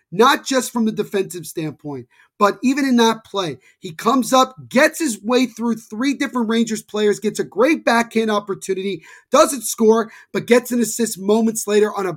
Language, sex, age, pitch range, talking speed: English, male, 30-49, 190-235 Hz, 180 wpm